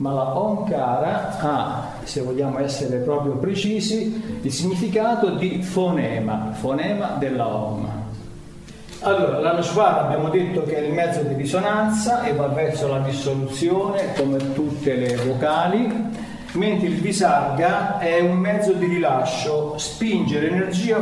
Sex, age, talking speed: male, 50-69, 130 wpm